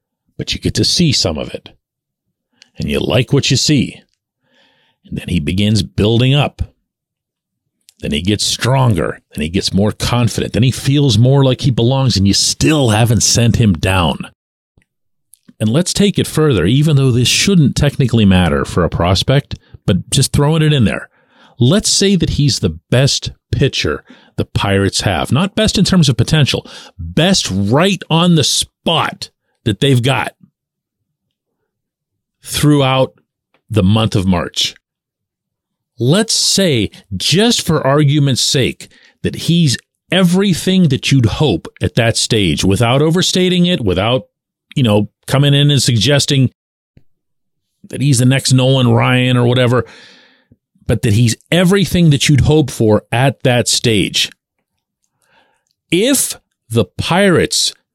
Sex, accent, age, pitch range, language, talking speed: male, American, 50-69, 110-150 Hz, English, 145 wpm